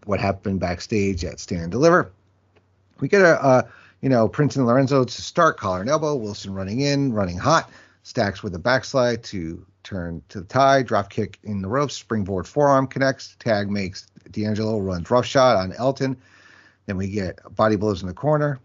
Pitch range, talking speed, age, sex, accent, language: 100-135 Hz, 190 wpm, 40-59, male, American, English